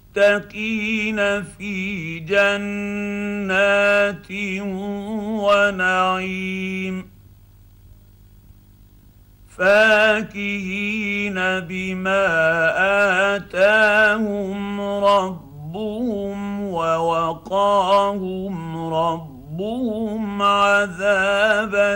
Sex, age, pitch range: male, 50-69, 165-205 Hz